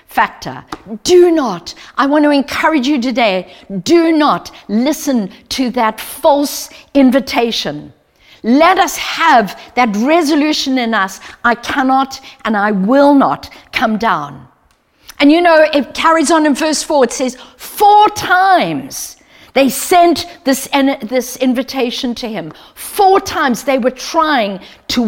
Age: 50-69